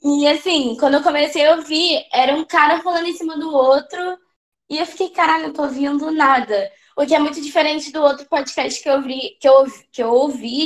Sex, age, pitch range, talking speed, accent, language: female, 10-29, 255-320 Hz, 220 wpm, Brazilian, Portuguese